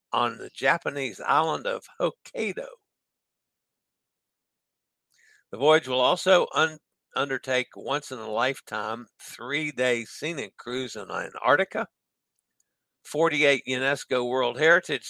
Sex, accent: male, American